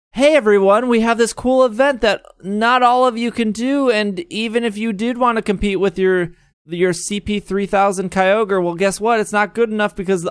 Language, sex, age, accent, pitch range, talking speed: English, male, 20-39, American, 140-195 Hz, 210 wpm